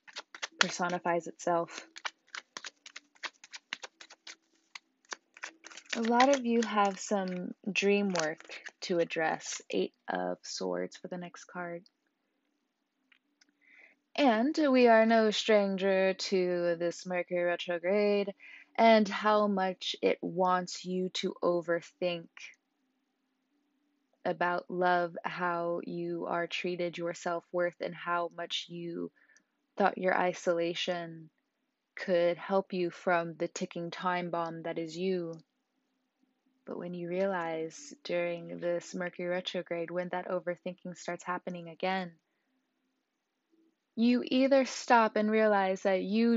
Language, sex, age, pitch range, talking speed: English, female, 20-39, 175-230 Hz, 105 wpm